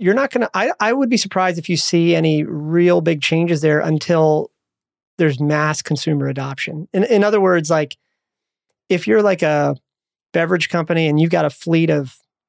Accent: American